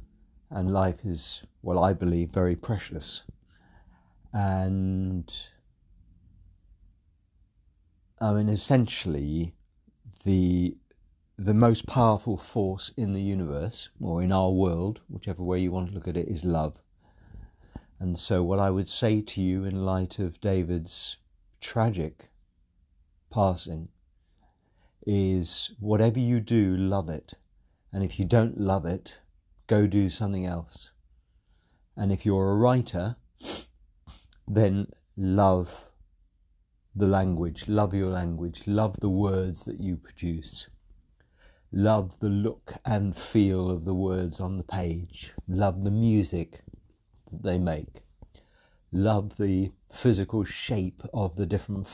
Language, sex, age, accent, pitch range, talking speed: English, male, 50-69, British, 85-100 Hz, 120 wpm